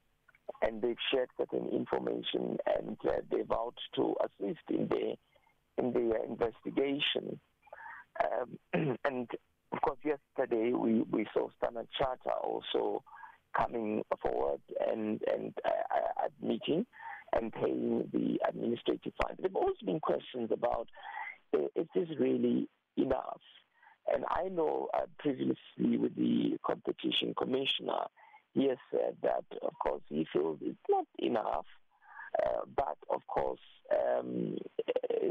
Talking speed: 120 wpm